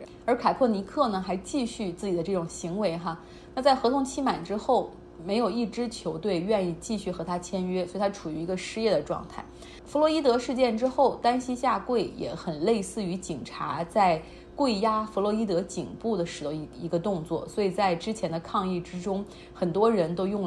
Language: Chinese